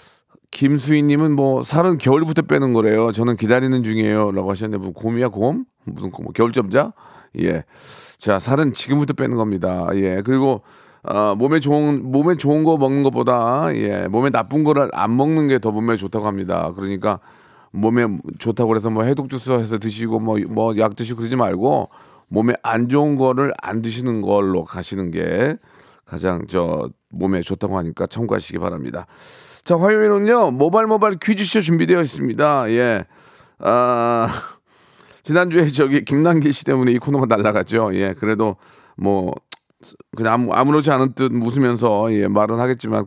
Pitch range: 110-150 Hz